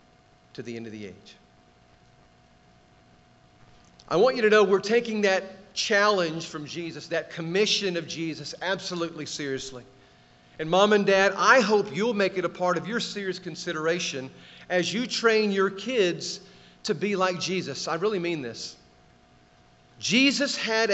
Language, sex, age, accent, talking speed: English, male, 40-59, American, 150 wpm